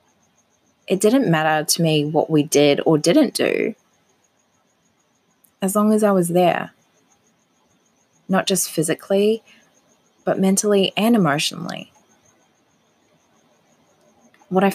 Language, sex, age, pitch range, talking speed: English, female, 20-39, 160-195 Hz, 105 wpm